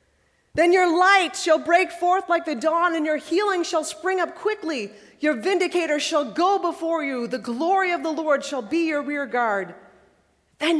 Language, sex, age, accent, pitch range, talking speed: English, female, 40-59, American, 180-285 Hz, 185 wpm